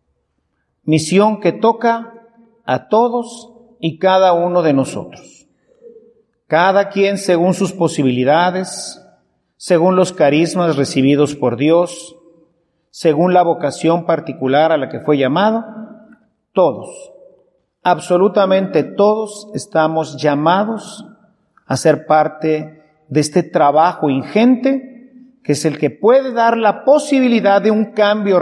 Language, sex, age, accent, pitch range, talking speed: Spanish, male, 40-59, Mexican, 145-200 Hz, 110 wpm